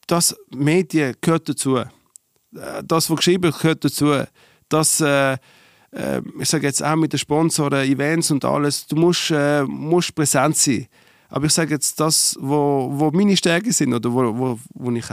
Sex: male